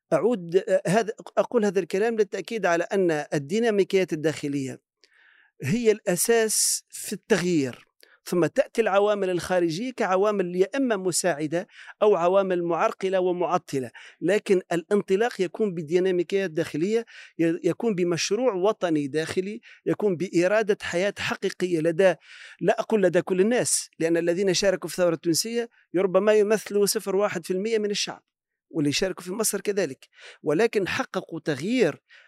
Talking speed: 120 wpm